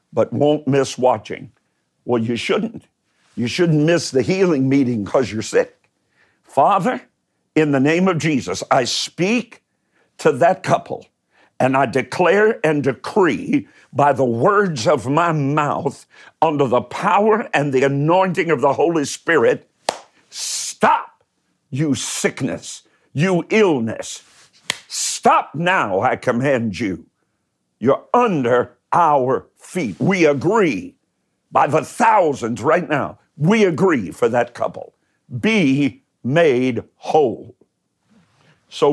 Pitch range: 135-180 Hz